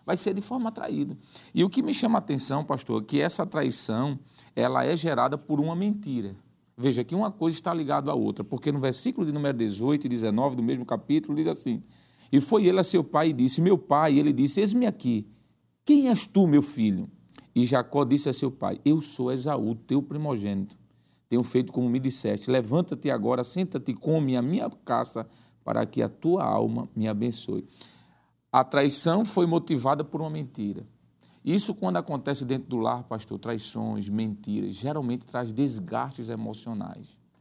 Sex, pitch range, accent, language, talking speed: male, 120-165 Hz, Brazilian, Portuguese, 185 wpm